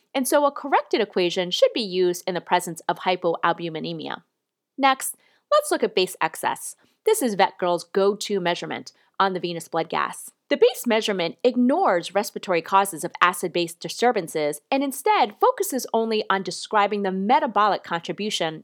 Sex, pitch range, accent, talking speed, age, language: female, 175-265 Hz, American, 150 wpm, 30-49, English